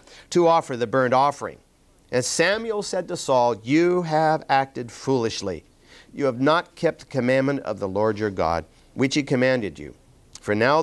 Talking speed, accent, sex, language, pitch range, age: 170 wpm, American, male, English, 115-150 Hz, 50-69